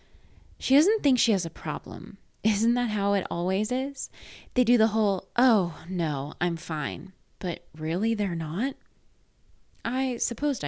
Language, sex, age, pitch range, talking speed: English, female, 20-39, 165-225 Hz, 150 wpm